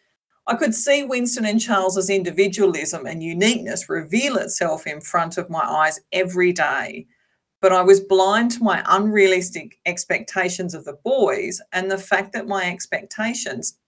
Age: 40-59